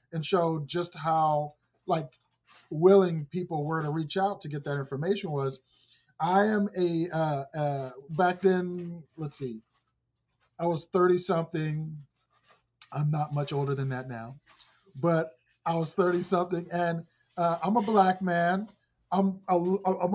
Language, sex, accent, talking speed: English, male, American, 150 wpm